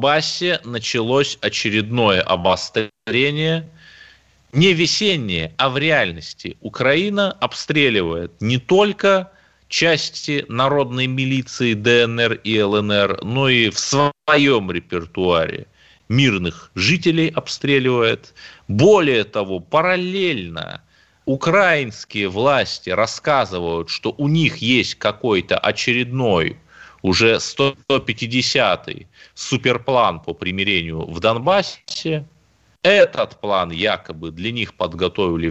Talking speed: 85 wpm